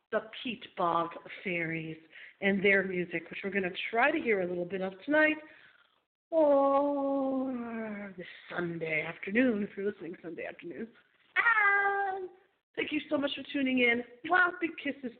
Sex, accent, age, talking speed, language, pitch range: female, American, 40-59, 155 wpm, English, 190-280 Hz